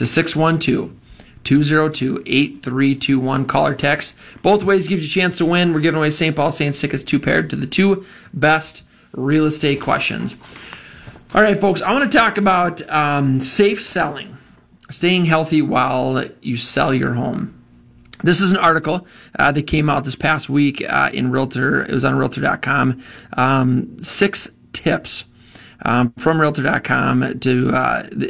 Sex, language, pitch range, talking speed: male, English, 130-160 Hz, 160 wpm